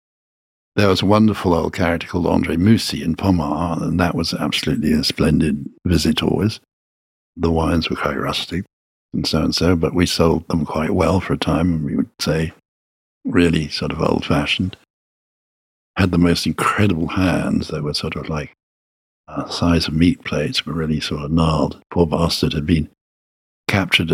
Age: 60-79